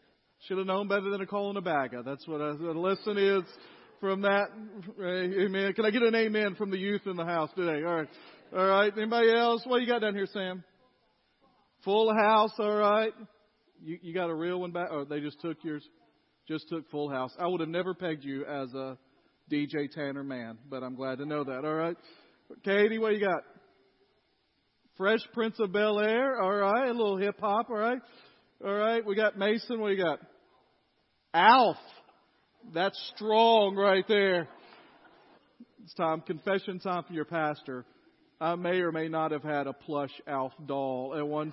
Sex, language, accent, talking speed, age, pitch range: male, English, American, 195 wpm, 40-59, 165-230 Hz